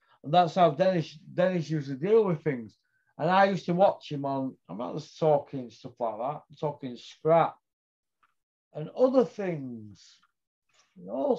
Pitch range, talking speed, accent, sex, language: 125-155 Hz, 165 wpm, British, male, English